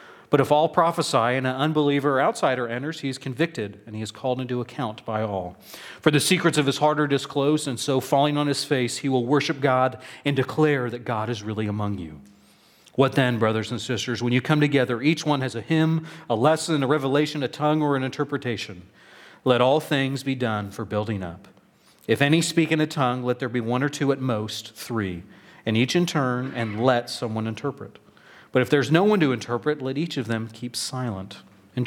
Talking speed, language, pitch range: 215 wpm, English, 115-145 Hz